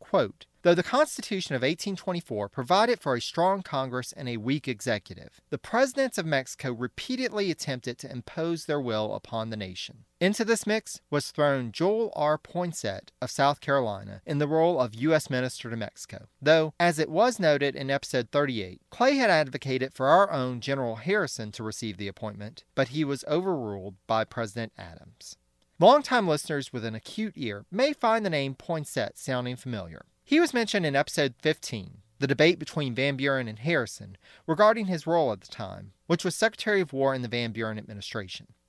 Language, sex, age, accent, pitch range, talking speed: English, male, 40-59, American, 115-175 Hz, 180 wpm